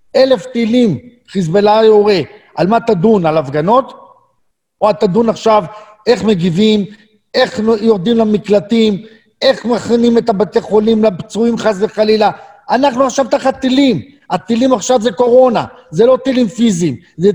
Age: 40-59